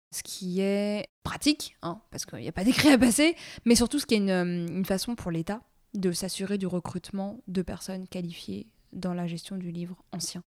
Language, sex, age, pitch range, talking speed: French, female, 20-39, 175-200 Hz, 205 wpm